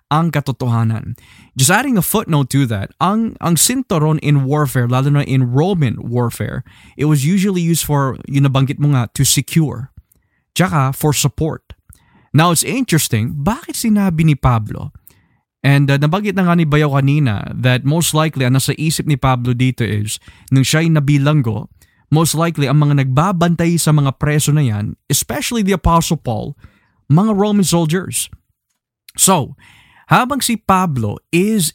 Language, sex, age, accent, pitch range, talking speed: Filipino, male, 20-39, native, 125-165 Hz, 155 wpm